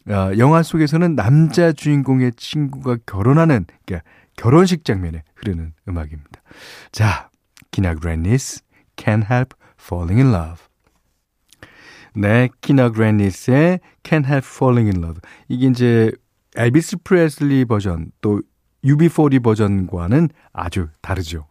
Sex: male